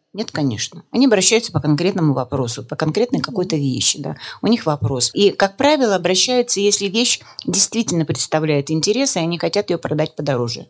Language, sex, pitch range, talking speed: Russian, female, 140-190 Hz, 170 wpm